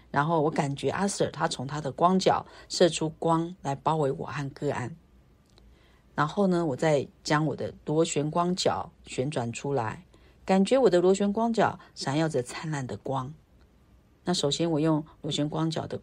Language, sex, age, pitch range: Chinese, female, 50-69, 130-165 Hz